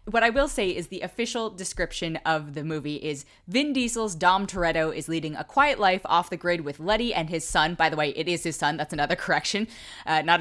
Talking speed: 235 wpm